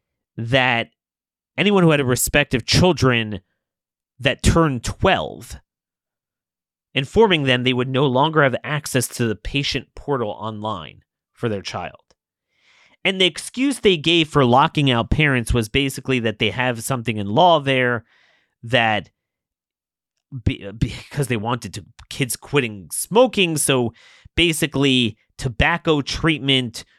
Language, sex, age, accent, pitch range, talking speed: English, male, 30-49, American, 115-155 Hz, 125 wpm